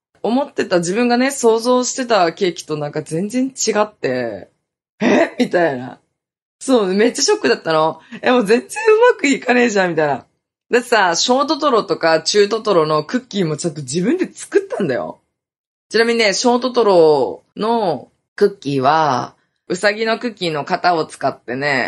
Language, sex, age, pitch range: Japanese, female, 20-39, 160-265 Hz